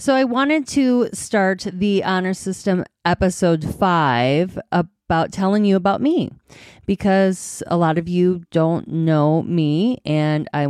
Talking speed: 140 wpm